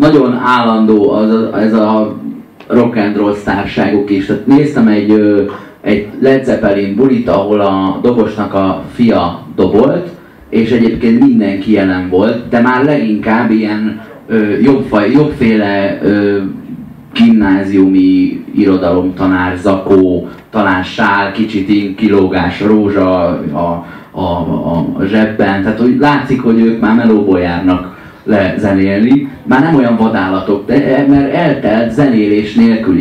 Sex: male